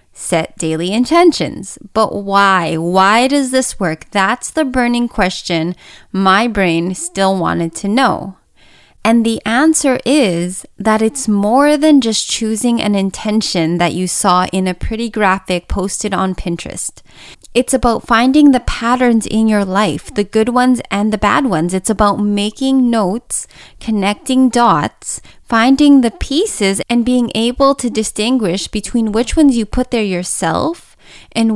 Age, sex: 20-39, female